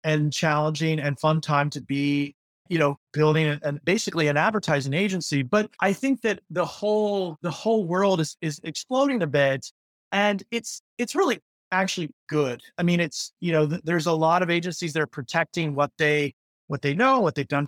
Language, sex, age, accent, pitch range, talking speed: English, male, 30-49, American, 150-195 Hz, 195 wpm